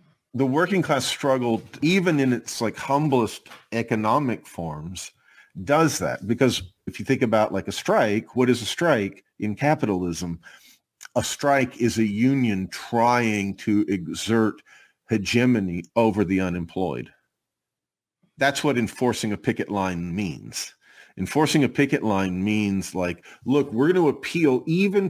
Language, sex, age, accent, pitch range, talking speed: English, male, 50-69, American, 100-130 Hz, 140 wpm